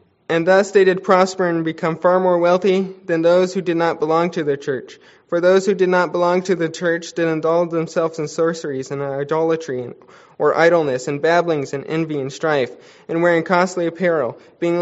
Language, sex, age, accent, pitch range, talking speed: English, male, 20-39, American, 155-185 Hz, 195 wpm